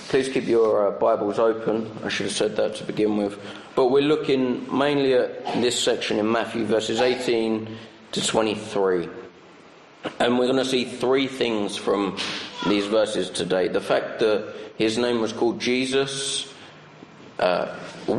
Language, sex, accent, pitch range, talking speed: English, male, British, 115-135 Hz, 155 wpm